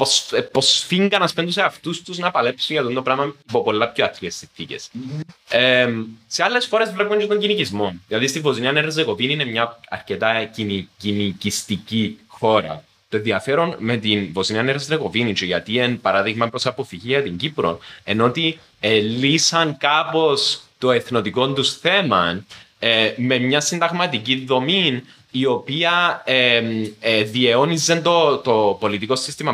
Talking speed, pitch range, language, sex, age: 140 wpm, 105-145 Hz, Greek, male, 20-39